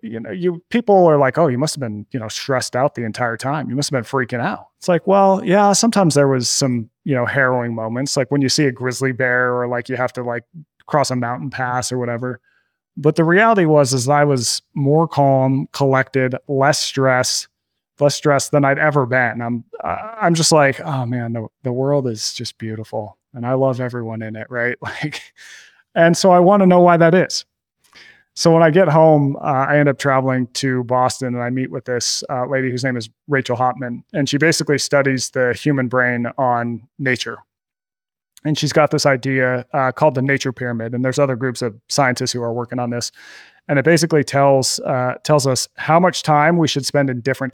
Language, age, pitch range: English, 30-49, 125-150 Hz